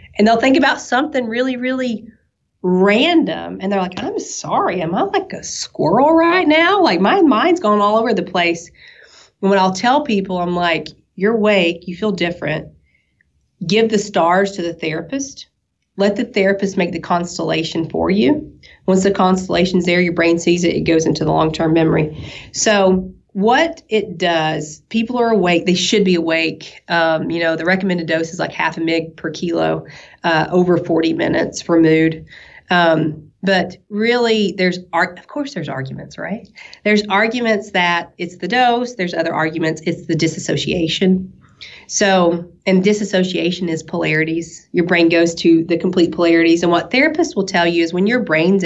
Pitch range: 170-210 Hz